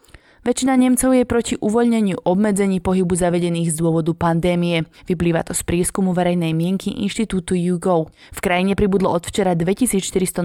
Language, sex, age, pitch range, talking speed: Slovak, female, 20-39, 175-205 Hz, 145 wpm